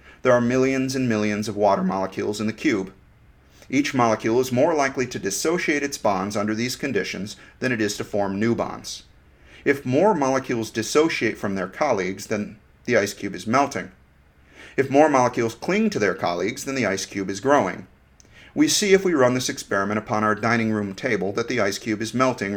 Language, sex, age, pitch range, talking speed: English, male, 40-59, 105-135 Hz, 195 wpm